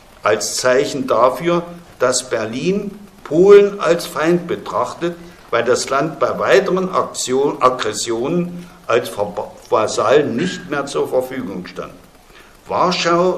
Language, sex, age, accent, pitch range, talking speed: German, male, 60-79, German, 125-180 Hz, 105 wpm